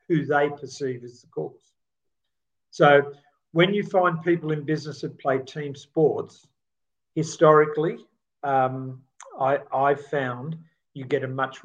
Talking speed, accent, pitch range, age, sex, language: 135 wpm, Australian, 135-165 Hz, 50-69, male, English